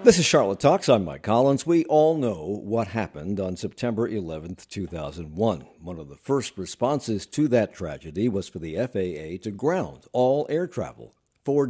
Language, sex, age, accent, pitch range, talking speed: English, male, 60-79, American, 95-150 Hz, 175 wpm